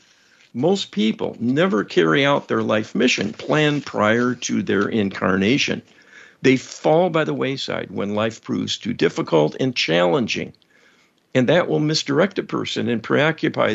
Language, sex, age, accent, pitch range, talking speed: English, male, 50-69, American, 110-140 Hz, 145 wpm